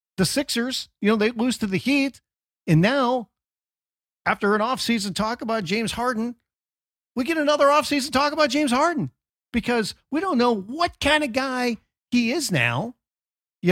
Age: 50-69